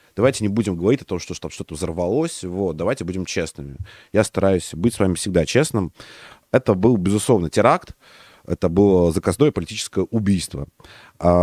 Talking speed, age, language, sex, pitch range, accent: 160 wpm, 30-49, Russian, male, 85-110 Hz, native